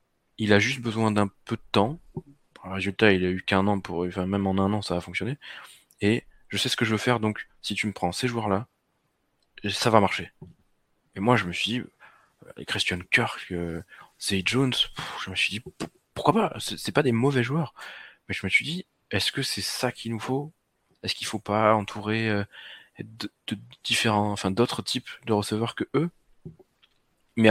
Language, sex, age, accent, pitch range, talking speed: French, male, 20-39, French, 95-120 Hz, 195 wpm